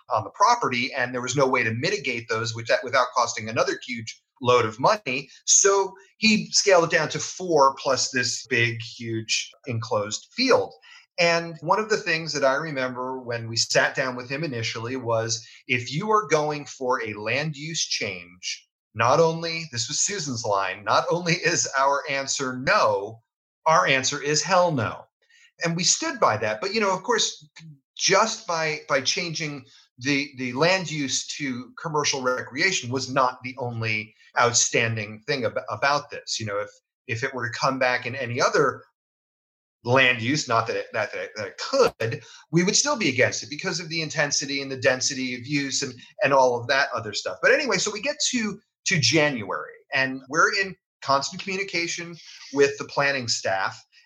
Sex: male